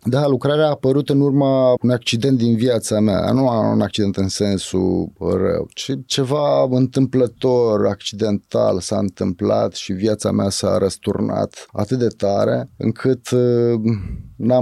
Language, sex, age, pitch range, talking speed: Romanian, male, 30-49, 95-125 Hz, 135 wpm